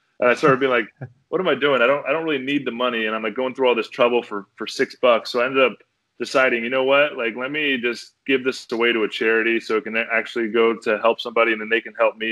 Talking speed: 290 wpm